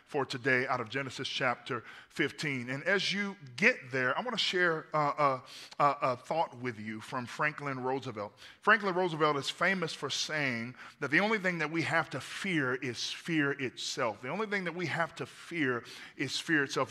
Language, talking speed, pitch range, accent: English, 190 wpm, 135-190 Hz, American